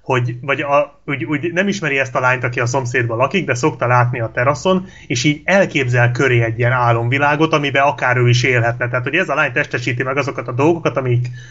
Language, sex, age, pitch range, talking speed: Hungarian, male, 30-49, 125-155 Hz, 220 wpm